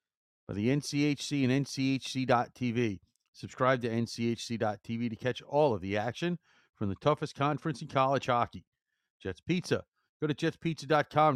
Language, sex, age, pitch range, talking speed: English, male, 40-59, 105-135 Hz, 135 wpm